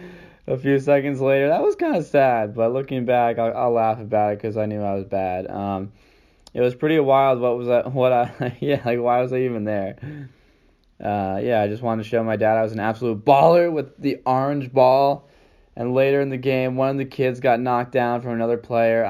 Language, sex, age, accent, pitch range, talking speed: English, male, 20-39, American, 110-135 Hz, 230 wpm